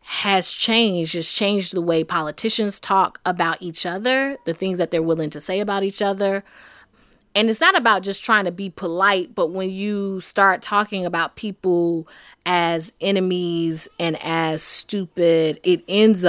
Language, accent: English, American